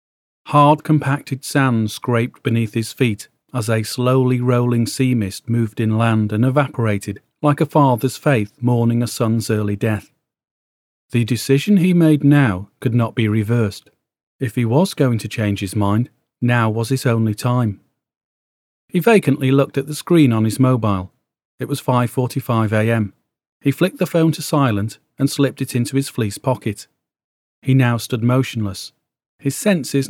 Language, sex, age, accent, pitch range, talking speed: English, male, 40-59, British, 110-140 Hz, 160 wpm